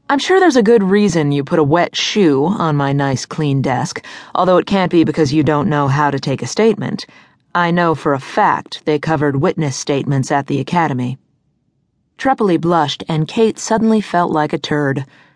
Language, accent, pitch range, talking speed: English, American, 145-185 Hz, 195 wpm